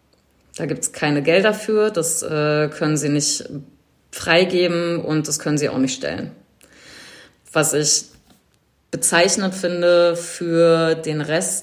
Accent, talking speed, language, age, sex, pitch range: German, 130 wpm, German, 30-49, female, 150-175 Hz